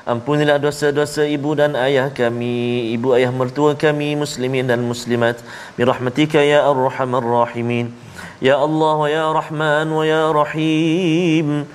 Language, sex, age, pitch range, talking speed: Malayalam, male, 40-59, 135-155 Hz, 170 wpm